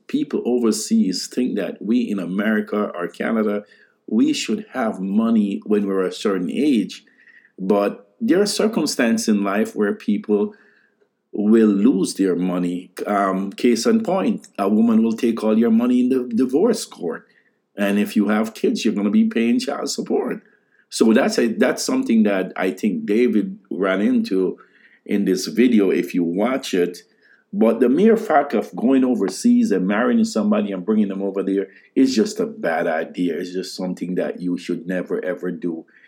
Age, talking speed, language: 50-69, 170 wpm, English